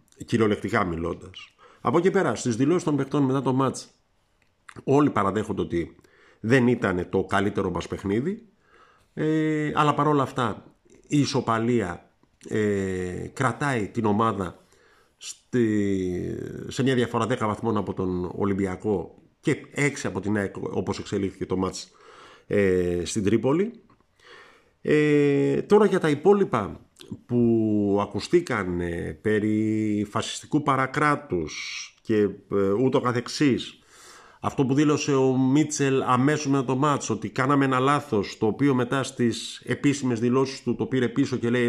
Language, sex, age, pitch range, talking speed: Greek, male, 50-69, 105-145 Hz, 130 wpm